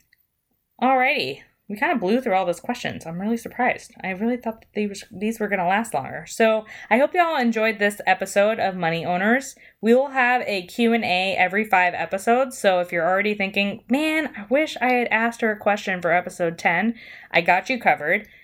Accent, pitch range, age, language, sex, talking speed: American, 180-235 Hz, 20-39, English, female, 210 wpm